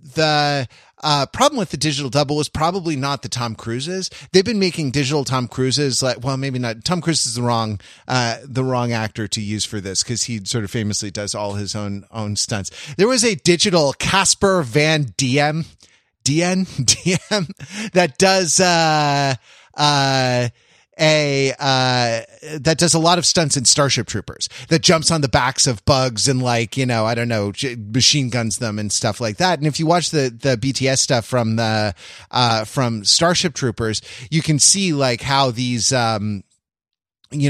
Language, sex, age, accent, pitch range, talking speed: English, male, 30-49, American, 115-150 Hz, 180 wpm